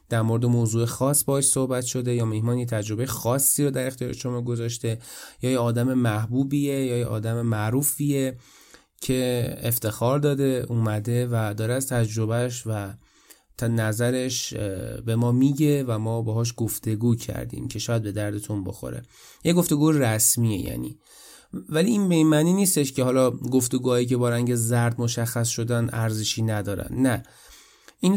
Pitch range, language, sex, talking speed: 115-135 Hz, Persian, male, 145 wpm